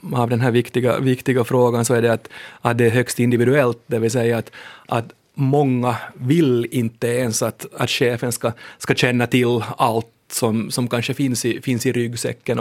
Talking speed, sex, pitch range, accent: 185 wpm, male, 120-135 Hz, native